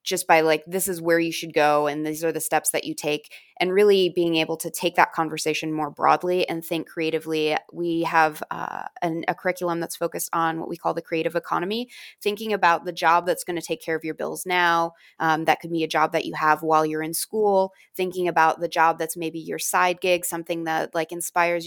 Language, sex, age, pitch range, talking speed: English, female, 20-39, 160-180 Hz, 230 wpm